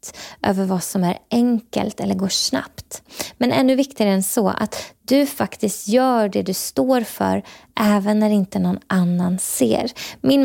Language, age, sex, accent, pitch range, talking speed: Swedish, 20-39, female, native, 195-240 Hz, 160 wpm